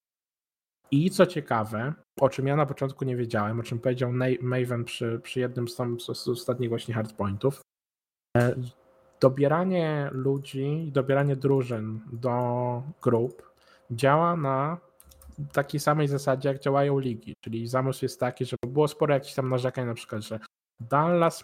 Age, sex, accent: 20-39, male, native